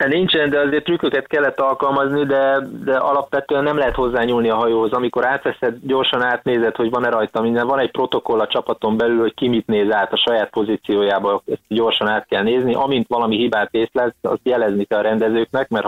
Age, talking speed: 20-39, 195 wpm